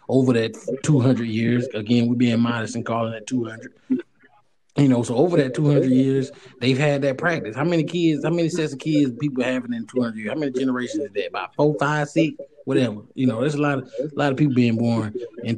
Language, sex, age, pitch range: English, male, 20-39, 120-155 Hz